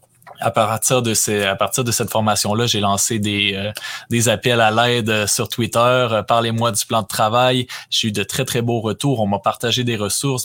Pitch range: 105-125 Hz